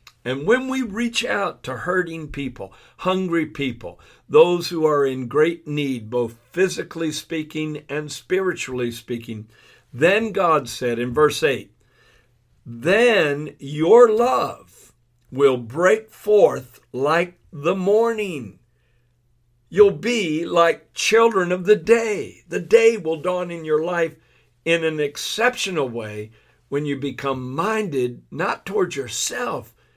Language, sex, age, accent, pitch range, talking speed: English, male, 60-79, American, 125-170 Hz, 125 wpm